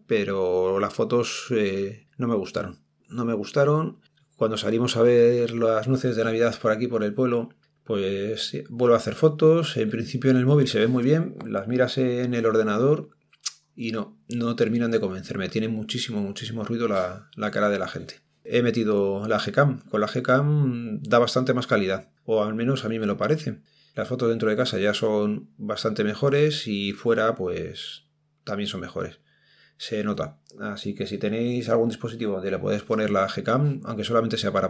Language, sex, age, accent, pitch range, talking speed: Spanish, male, 30-49, Spanish, 100-125 Hz, 190 wpm